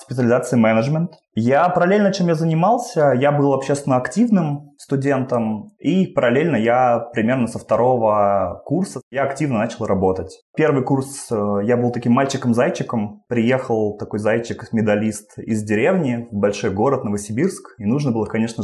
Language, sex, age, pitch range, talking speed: Russian, male, 20-39, 105-130 Hz, 140 wpm